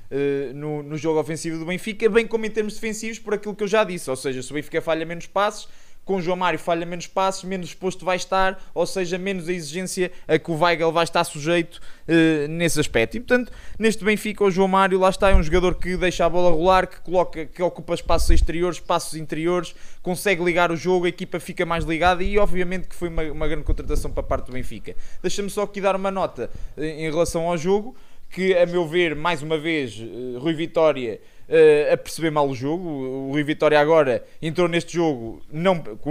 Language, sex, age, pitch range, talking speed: Portuguese, male, 20-39, 150-180 Hz, 220 wpm